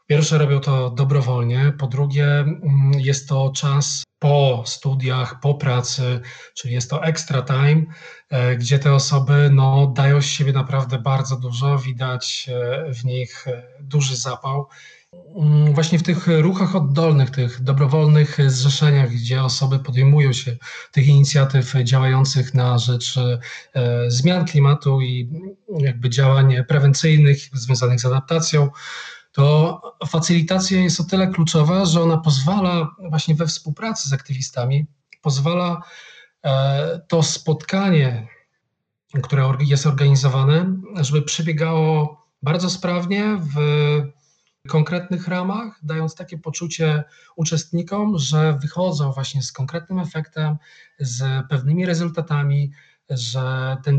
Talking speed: 110 wpm